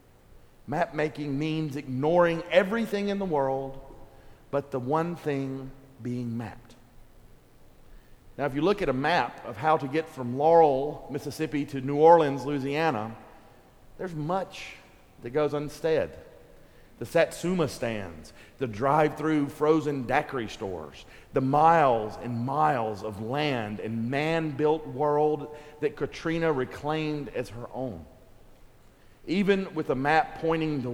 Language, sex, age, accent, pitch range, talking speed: English, male, 50-69, American, 120-160 Hz, 130 wpm